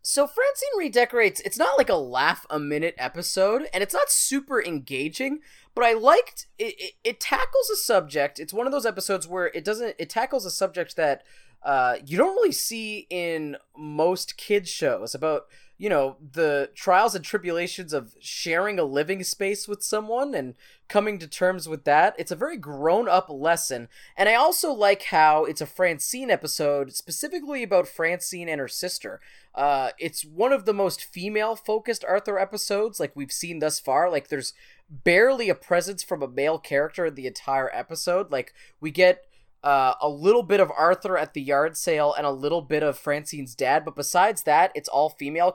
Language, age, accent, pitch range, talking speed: English, 20-39, American, 145-205 Hz, 190 wpm